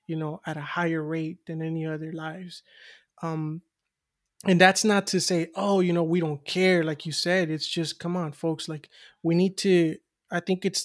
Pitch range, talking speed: 160-185 Hz, 205 wpm